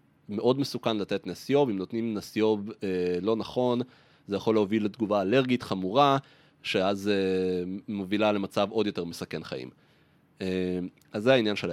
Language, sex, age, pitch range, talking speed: Hebrew, male, 30-49, 95-130 Hz, 150 wpm